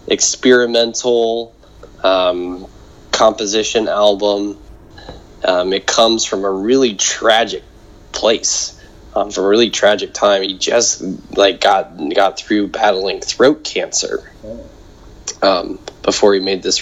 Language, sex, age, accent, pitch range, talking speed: English, male, 10-29, American, 95-115 Hz, 115 wpm